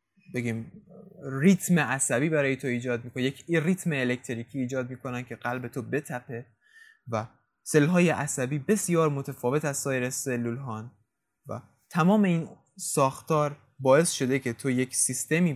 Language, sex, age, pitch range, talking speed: Persian, male, 20-39, 125-160 Hz, 130 wpm